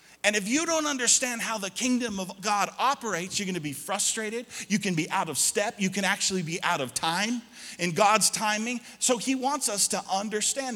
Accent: American